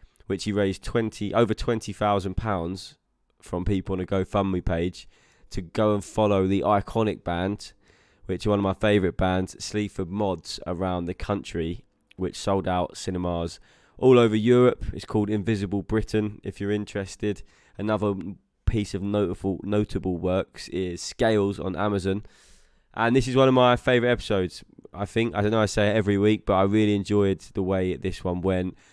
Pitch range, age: 95-105 Hz, 20-39